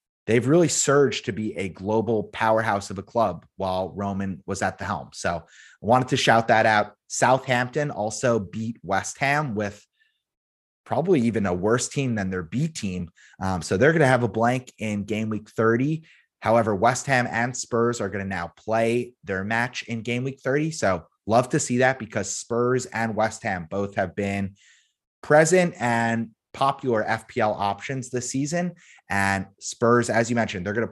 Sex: male